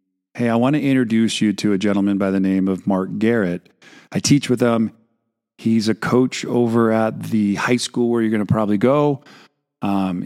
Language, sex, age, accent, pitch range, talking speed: English, male, 40-59, American, 95-115 Hz, 200 wpm